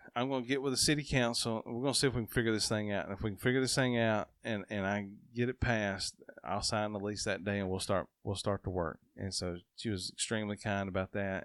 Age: 30-49